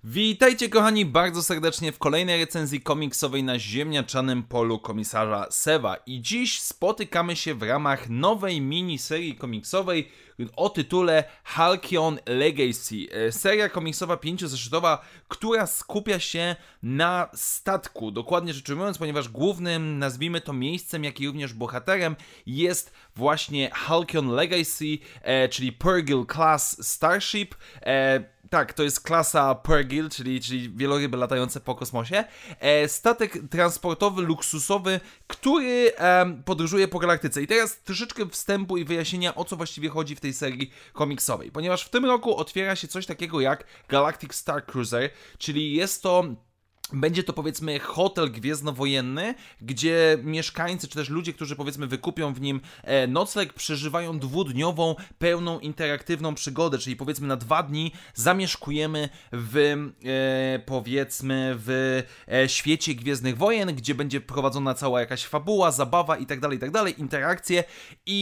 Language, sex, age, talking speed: Polish, male, 20-39, 135 wpm